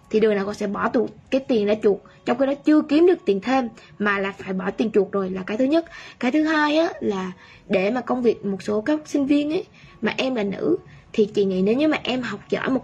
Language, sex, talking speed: Vietnamese, female, 275 wpm